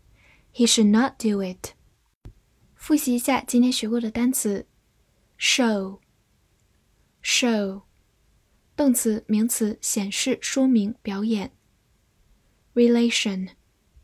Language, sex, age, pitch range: Chinese, female, 10-29, 210-265 Hz